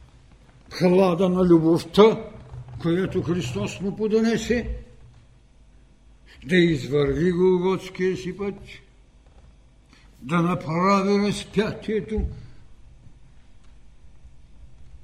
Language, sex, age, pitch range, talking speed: Bulgarian, male, 60-79, 115-190 Hz, 70 wpm